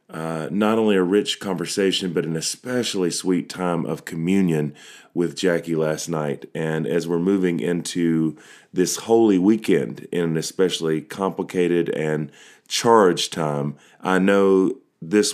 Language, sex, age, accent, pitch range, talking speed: English, male, 30-49, American, 80-95 Hz, 135 wpm